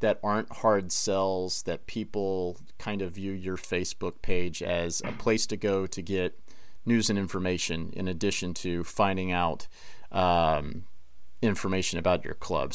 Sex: male